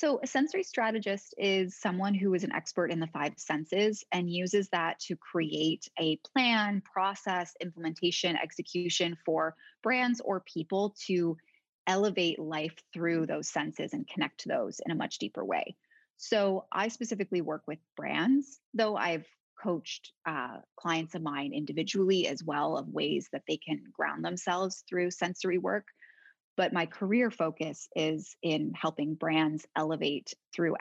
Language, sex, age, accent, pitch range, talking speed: English, female, 20-39, American, 160-200 Hz, 155 wpm